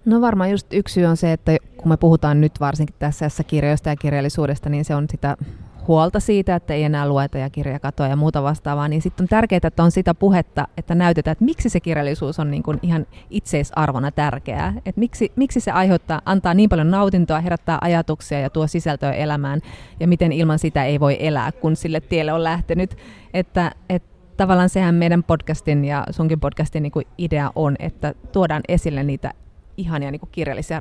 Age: 30-49